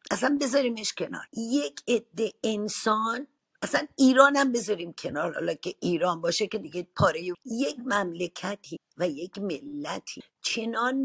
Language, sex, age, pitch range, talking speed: Persian, female, 50-69, 175-230 Hz, 125 wpm